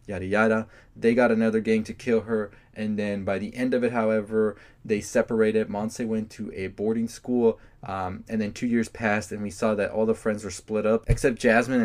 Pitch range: 105-125 Hz